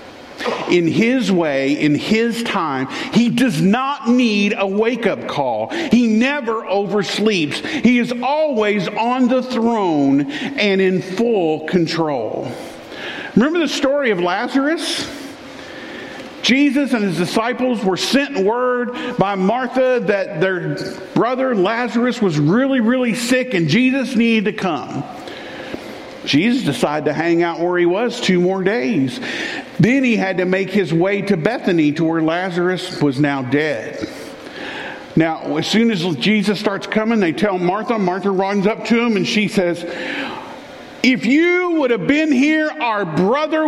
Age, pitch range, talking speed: 50-69, 185-260 Hz, 145 wpm